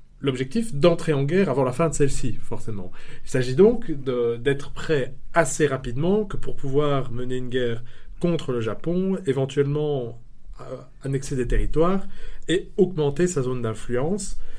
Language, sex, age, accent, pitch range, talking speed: French, male, 30-49, French, 120-155 Hz, 150 wpm